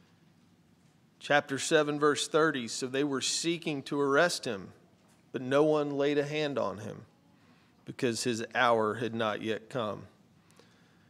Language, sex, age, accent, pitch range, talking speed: English, male, 40-59, American, 120-145 Hz, 140 wpm